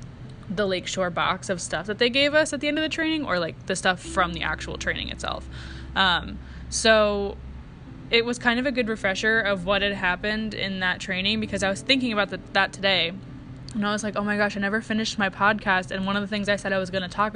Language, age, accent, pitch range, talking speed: English, 10-29, American, 180-215 Hz, 245 wpm